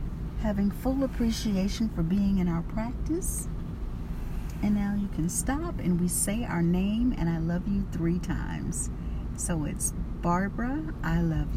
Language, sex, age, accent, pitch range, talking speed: English, female, 50-69, American, 165-220 Hz, 150 wpm